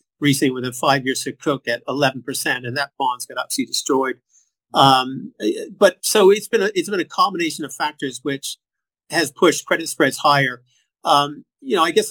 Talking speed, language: 195 wpm, English